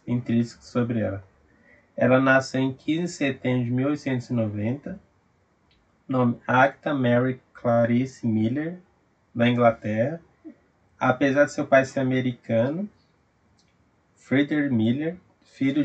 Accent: Brazilian